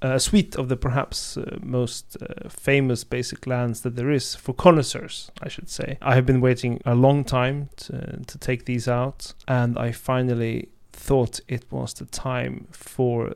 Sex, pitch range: male, 120-135 Hz